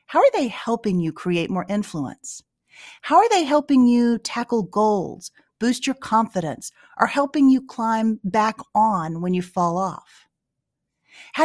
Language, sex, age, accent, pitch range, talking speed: English, female, 40-59, American, 185-260 Hz, 150 wpm